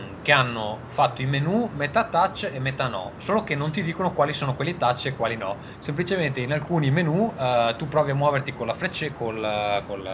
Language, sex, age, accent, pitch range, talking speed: Italian, male, 20-39, native, 105-140 Hz, 215 wpm